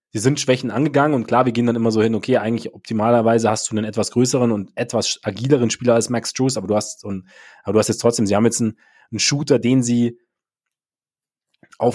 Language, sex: German, male